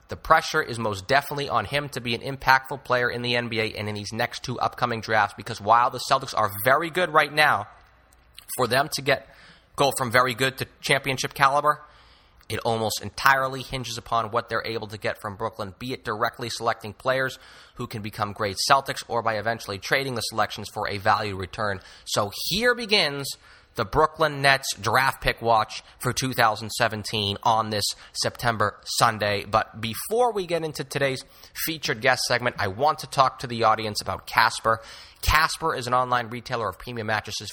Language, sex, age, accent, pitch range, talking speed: English, male, 30-49, American, 115-150 Hz, 185 wpm